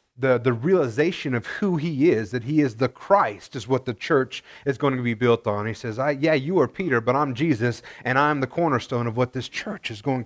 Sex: male